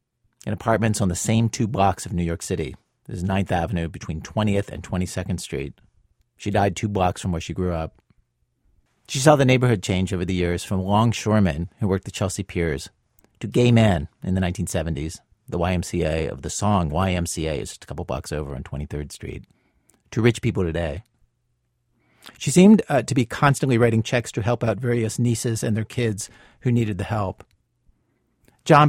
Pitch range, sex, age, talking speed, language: 95-120 Hz, male, 50-69, 185 wpm, English